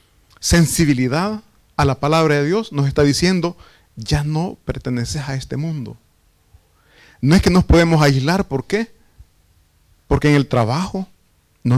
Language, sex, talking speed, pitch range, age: Italian, male, 145 wpm, 110-170 Hz, 30-49